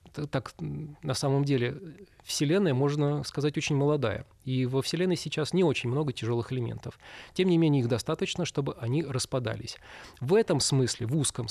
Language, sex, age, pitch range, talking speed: Russian, male, 20-39, 120-150 Hz, 160 wpm